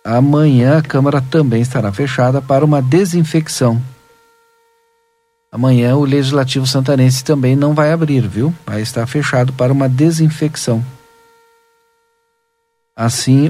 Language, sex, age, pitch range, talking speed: Portuguese, male, 50-69, 125-165 Hz, 110 wpm